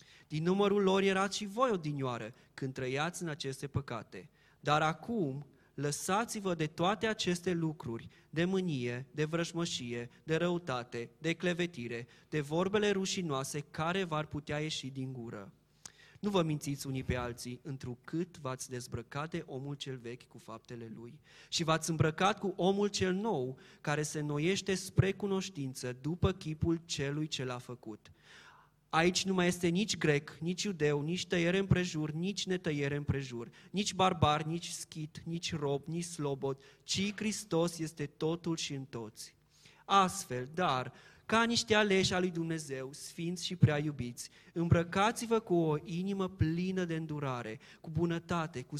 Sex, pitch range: male, 135-180 Hz